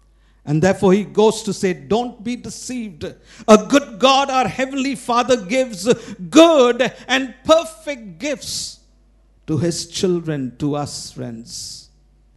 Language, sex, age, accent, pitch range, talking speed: English, male, 50-69, Indian, 160-245 Hz, 125 wpm